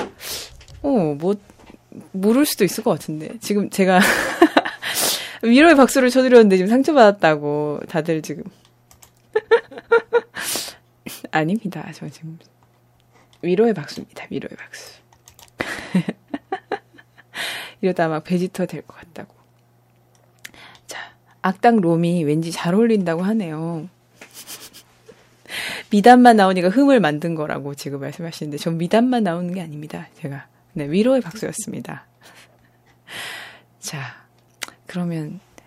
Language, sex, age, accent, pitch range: Korean, female, 20-39, native, 155-220 Hz